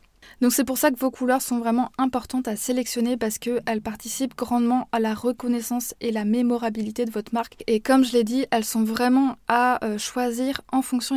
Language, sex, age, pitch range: French, female, 20-39, 225-250 Hz